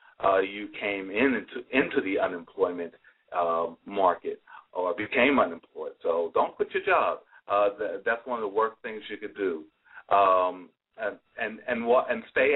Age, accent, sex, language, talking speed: 40-59, American, male, English, 165 wpm